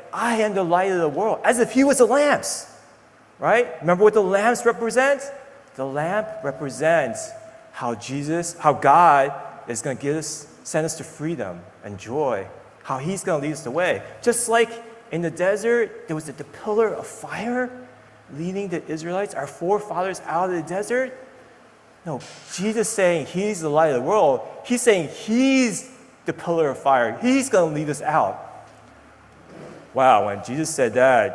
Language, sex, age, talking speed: English, male, 30-49, 170 wpm